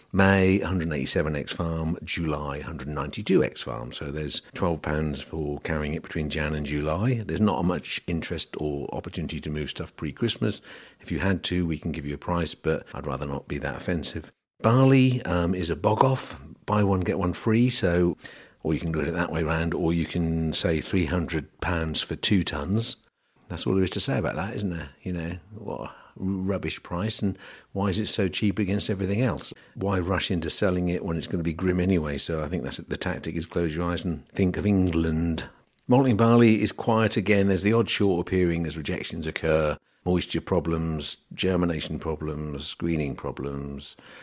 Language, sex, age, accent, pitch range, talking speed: English, male, 50-69, British, 75-95 Hz, 190 wpm